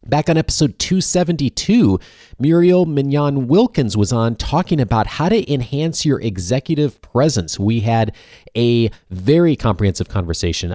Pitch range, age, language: 95-140 Hz, 30-49, English